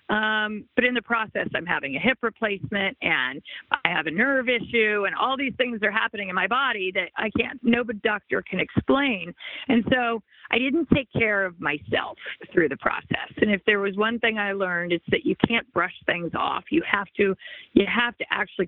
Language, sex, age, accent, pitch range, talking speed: English, female, 40-59, American, 195-235 Hz, 210 wpm